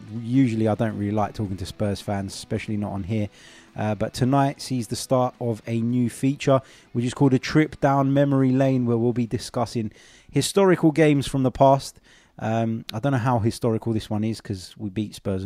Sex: male